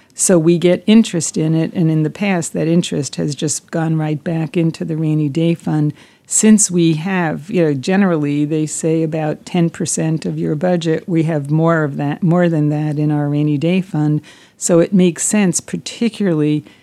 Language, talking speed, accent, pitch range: English, 190 wpm, American, 155-175 Hz